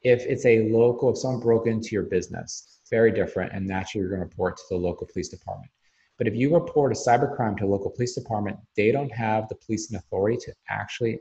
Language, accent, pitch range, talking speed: English, American, 100-120 Hz, 230 wpm